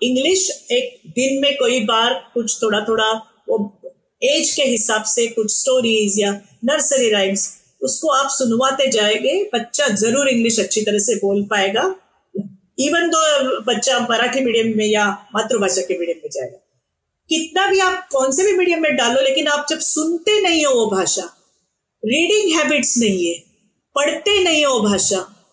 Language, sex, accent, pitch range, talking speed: Hindi, female, native, 215-320 Hz, 160 wpm